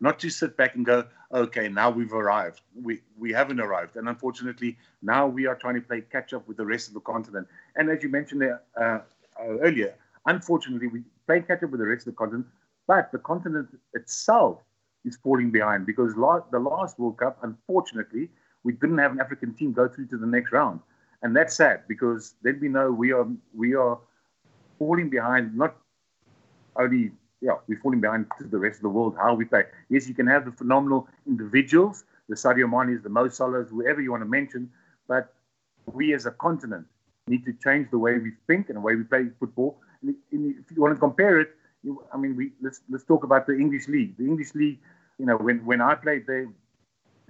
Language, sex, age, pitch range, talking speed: English, male, 50-69, 120-150 Hz, 205 wpm